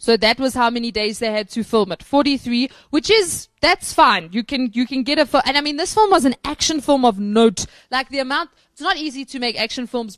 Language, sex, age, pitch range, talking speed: English, female, 20-39, 225-275 Hz, 255 wpm